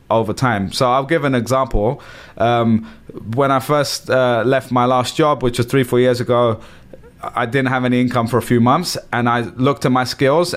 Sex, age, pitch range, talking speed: male, 20-39, 120-140 Hz, 210 wpm